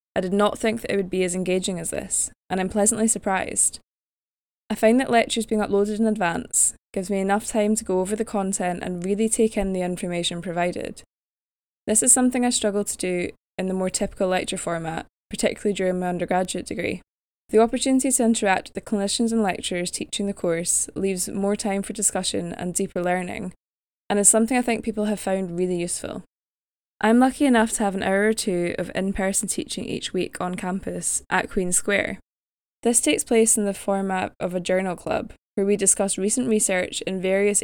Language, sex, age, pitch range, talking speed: English, female, 10-29, 180-215 Hz, 200 wpm